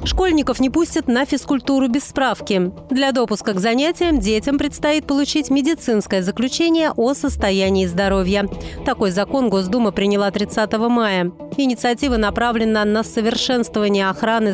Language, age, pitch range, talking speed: Russian, 30-49, 205-270 Hz, 125 wpm